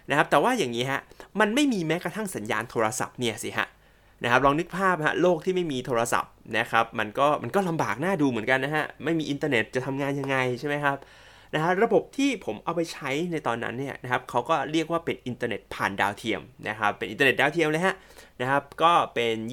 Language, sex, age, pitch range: Thai, male, 20-39, 120-165 Hz